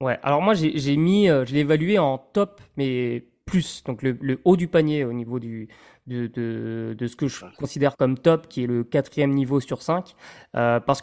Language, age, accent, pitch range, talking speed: French, 20-39, French, 130-155 Hz, 225 wpm